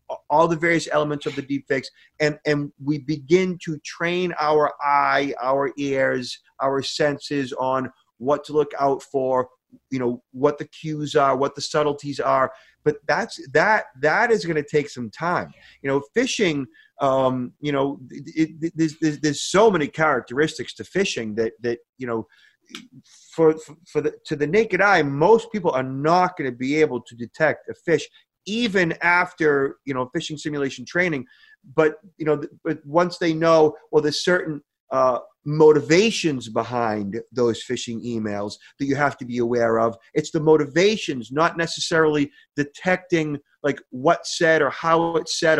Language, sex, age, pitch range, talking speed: English, male, 30-49, 135-165 Hz, 170 wpm